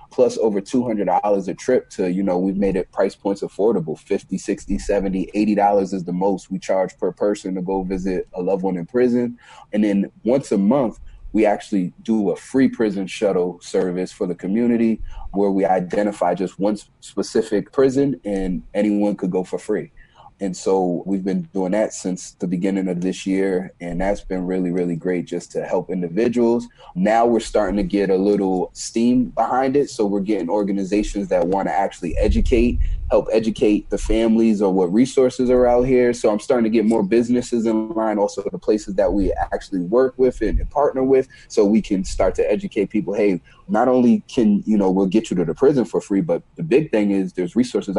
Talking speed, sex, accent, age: 200 wpm, male, American, 30-49